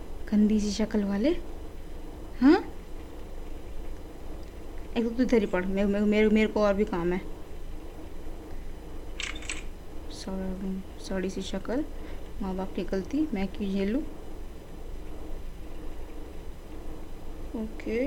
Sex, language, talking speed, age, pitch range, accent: female, Hindi, 70 wpm, 20-39, 200-250 Hz, native